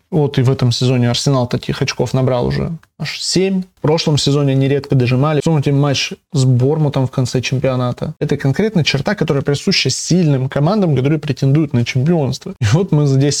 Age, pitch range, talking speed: 20-39, 130-160 Hz, 175 wpm